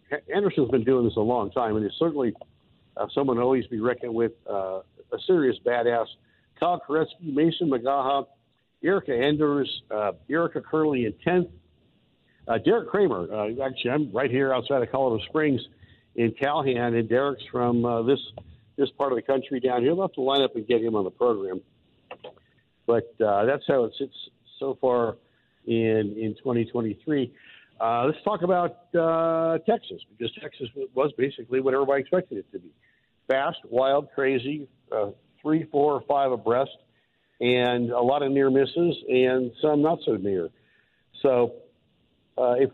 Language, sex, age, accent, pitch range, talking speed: English, male, 60-79, American, 120-155 Hz, 170 wpm